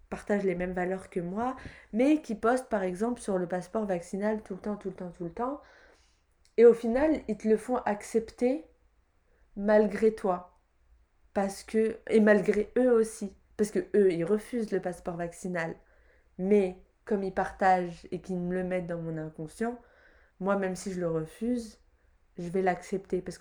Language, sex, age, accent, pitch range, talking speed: French, female, 20-39, French, 180-220 Hz, 180 wpm